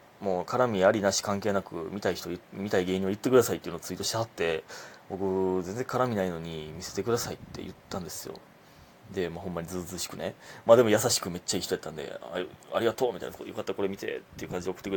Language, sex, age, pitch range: Japanese, male, 30-49, 90-115 Hz